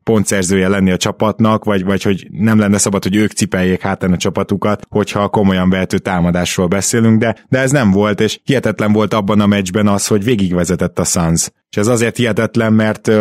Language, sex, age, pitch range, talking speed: Hungarian, male, 20-39, 95-115 Hz, 185 wpm